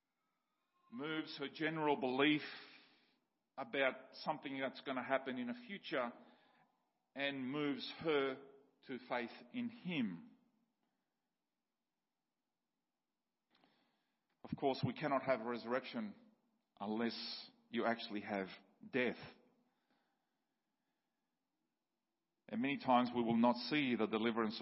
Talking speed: 95 wpm